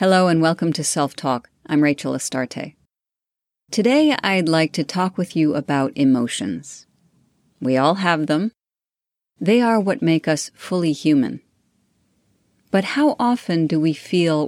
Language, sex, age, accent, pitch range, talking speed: English, female, 40-59, American, 140-180 Hz, 145 wpm